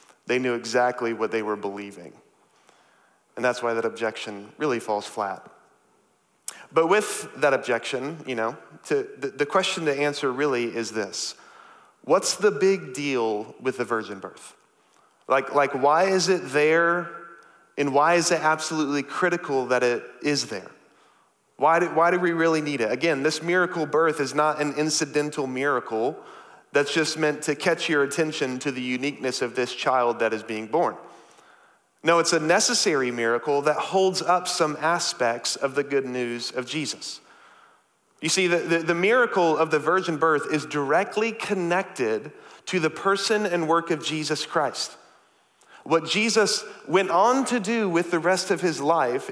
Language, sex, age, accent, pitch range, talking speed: English, male, 30-49, American, 130-175 Hz, 165 wpm